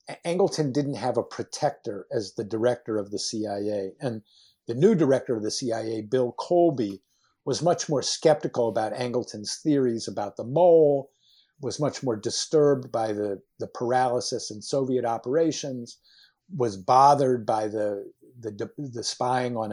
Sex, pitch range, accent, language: male, 115-145 Hz, American, English